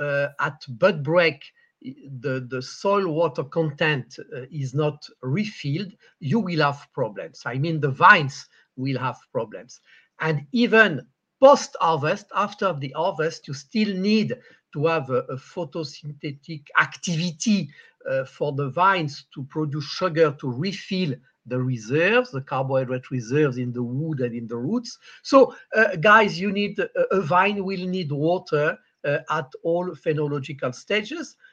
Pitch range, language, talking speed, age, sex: 145-205 Hz, Italian, 145 wpm, 50-69, male